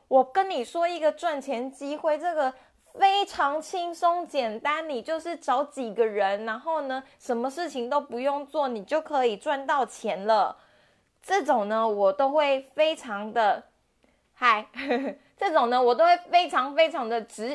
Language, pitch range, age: Chinese, 220-290 Hz, 20-39